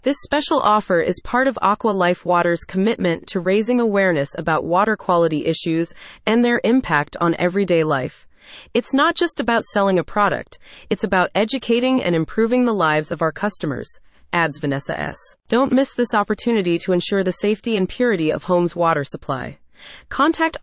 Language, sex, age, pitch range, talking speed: English, female, 30-49, 170-230 Hz, 170 wpm